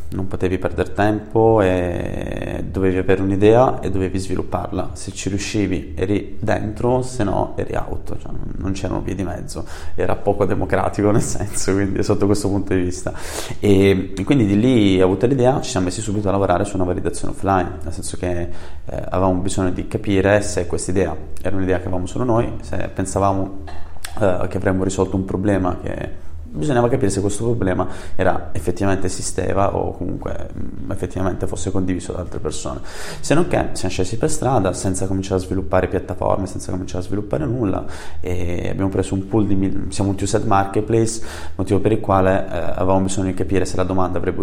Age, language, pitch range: 20-39, Italian, 90-100 Hz